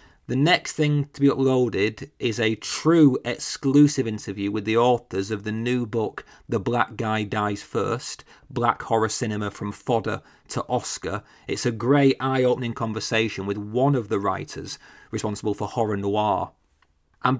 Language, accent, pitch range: English, British, 105-140 Hz